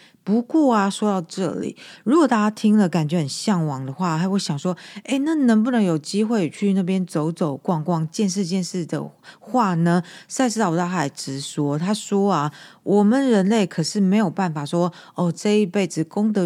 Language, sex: Chinese, female